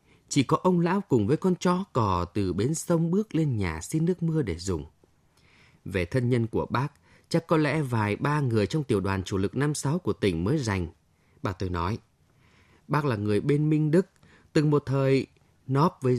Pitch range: 105-155 Hz